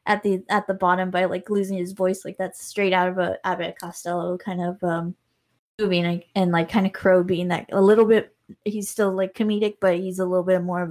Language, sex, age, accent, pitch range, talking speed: English, female, 20-39, American, 185-215 Hz, 240 wpm